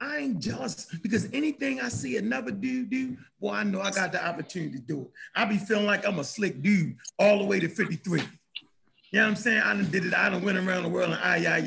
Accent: American